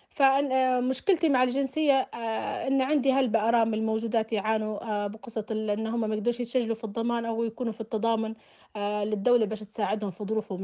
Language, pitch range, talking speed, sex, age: Arabic, 220-260 Hz, 145 wpm, female, 30-49